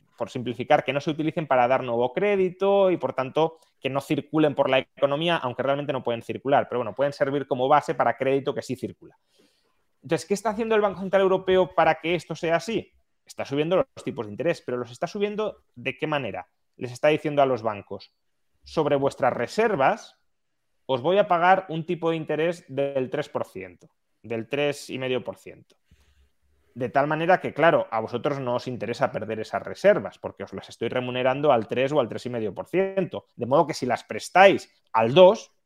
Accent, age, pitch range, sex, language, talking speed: Spanish, 30-49, 125-170 Hz, male, Spanish, 190 wpm